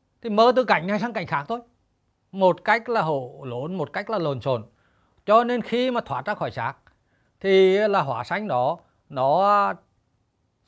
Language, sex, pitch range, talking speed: Vietnamese, male, 115-195 Hz, 190 wpm